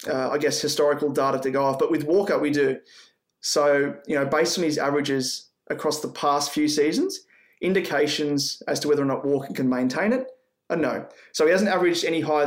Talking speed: 205 wpm